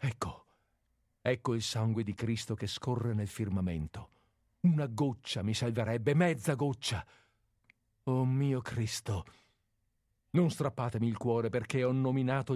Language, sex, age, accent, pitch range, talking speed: Italian, male, 50-69, native, 110-130 Hz, 125 wpm